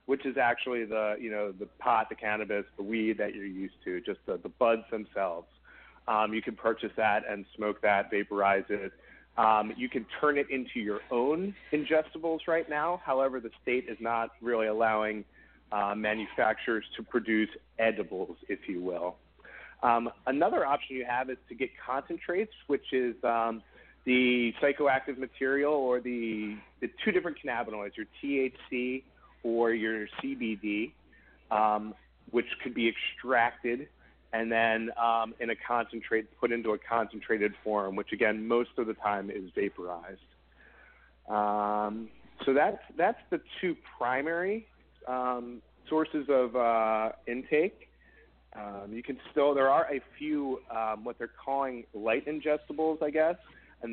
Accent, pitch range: American, 105-135 Hz